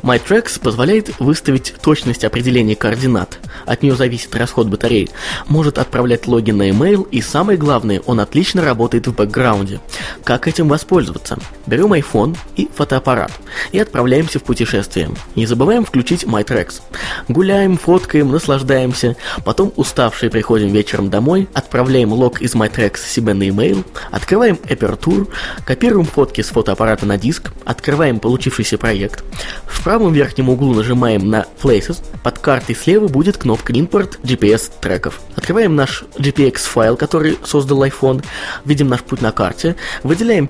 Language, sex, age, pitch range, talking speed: Russian, male, 20-39, 115-150 Hz, 140 wpm